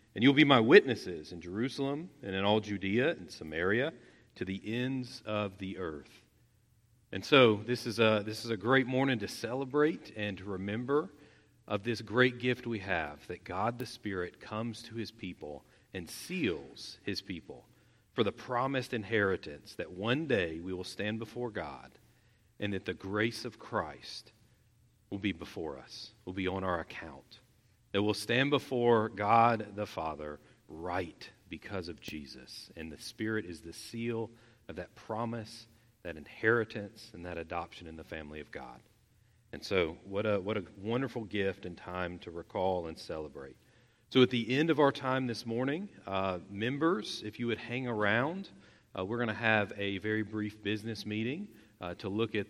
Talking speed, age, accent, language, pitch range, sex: 175 wpm, 40-59, American, English, 100-120 Hz, male